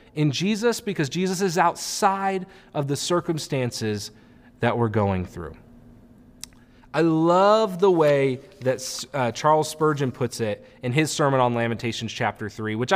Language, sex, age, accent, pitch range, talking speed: English, male, 30-49, American, 120-165 Hz, 145 wpm